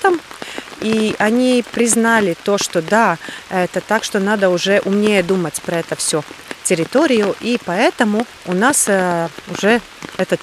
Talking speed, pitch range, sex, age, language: 130 wpm, 180-230 Hz, female, 30-49, Russian